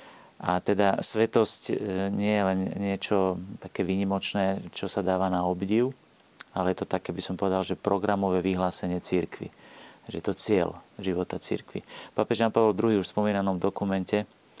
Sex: male